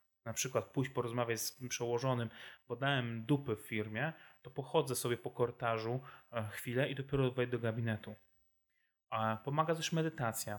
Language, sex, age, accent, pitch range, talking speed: Polish, male, 20-39, native, 110-135 Hz, 155 wpm